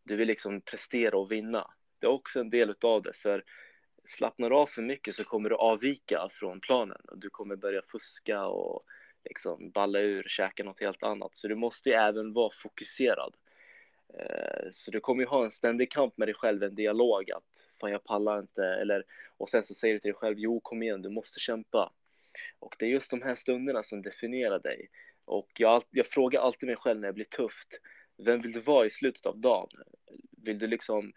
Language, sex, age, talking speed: Swedish, male, 20-39, 210 wpm